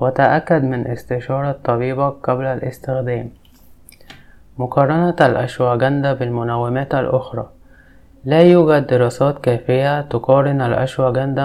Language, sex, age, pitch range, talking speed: Arabic, male, 20-39, 115-135 Hz, 85 wpm